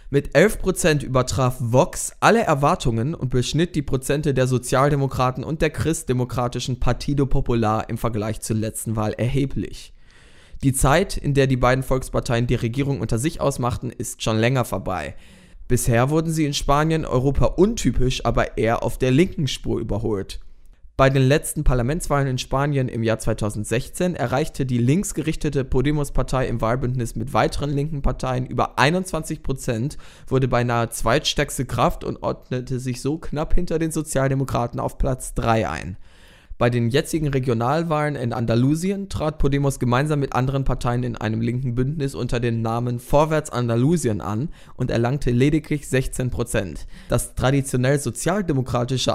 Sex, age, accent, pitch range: male, 20-39, German, 120-145 Hz